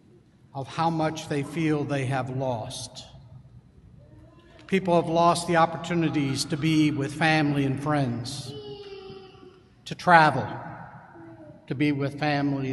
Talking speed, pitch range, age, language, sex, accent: 120 wpm, 135-165 Hz, 60-79, English, male, American